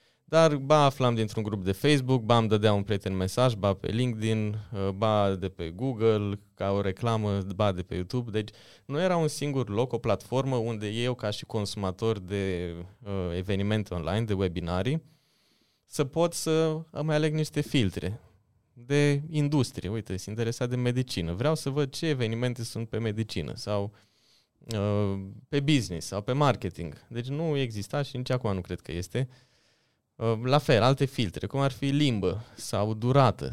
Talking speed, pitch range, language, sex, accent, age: 170 wpm, 100-135 Hz, Romanian, male, native, 20-39